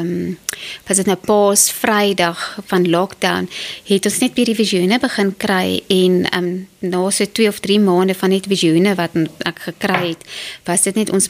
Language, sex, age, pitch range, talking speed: English, female, 20-39, 185-220 Hz, 175 wpm